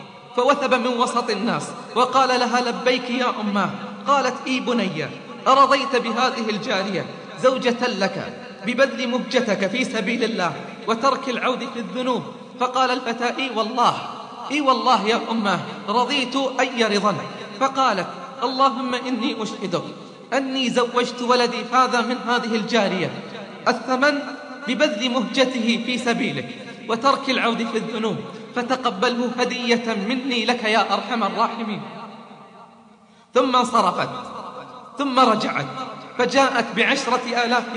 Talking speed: 115 wpm